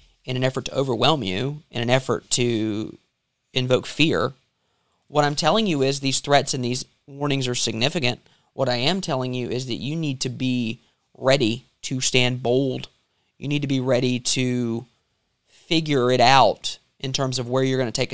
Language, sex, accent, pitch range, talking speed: English, male, American, 125-145 Hz, 185 wpm